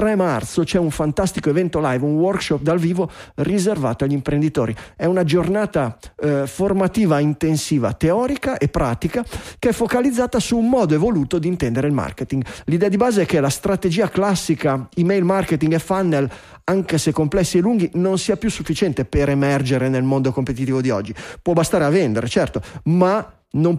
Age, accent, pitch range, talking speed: 30-49, native, 140-205 Hz, 175 wpm